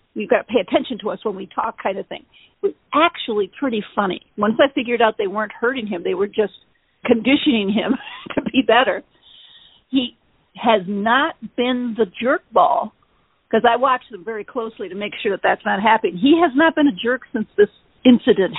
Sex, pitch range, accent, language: female, 220-285 Hz, American, English